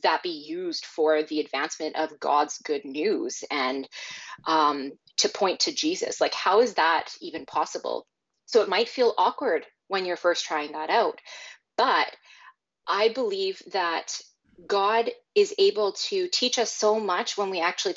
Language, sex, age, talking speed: English, female, 20-39, 160 wpm